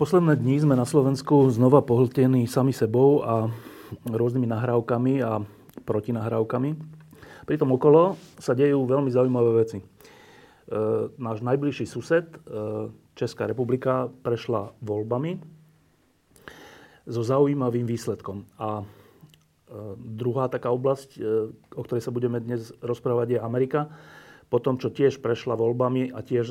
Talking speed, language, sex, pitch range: 120 wpm, Slovak, male, 115-130 Hz